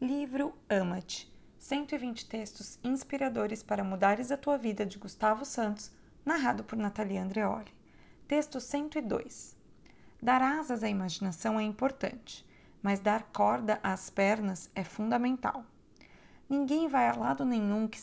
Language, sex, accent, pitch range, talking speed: Portuguese, female, Brazilian, 200-245 Hz, 125 wpm